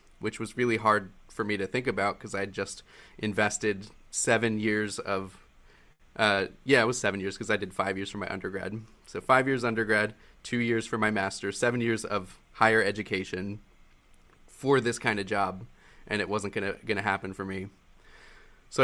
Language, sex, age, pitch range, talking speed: English, male, 20-39, 105-120 Hz, 190 wpm